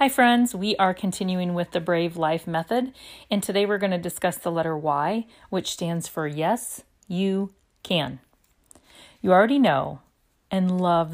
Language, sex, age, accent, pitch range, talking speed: English, female, 40-59, American, 160-195 Hz, 160 wpm